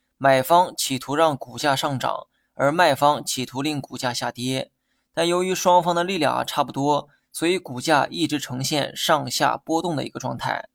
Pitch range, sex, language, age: 130-160 Hz, male, Chinese, 20-39